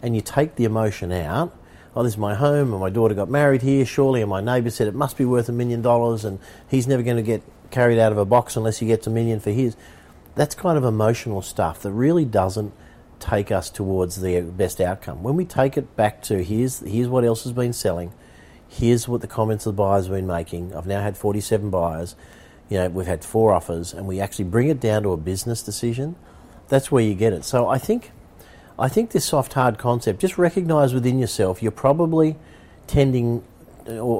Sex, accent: male, Australian